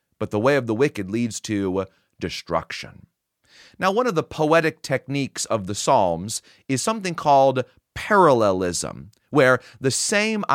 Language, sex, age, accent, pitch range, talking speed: English, male, 30-49, American, 115-150 Hz, 140 wpm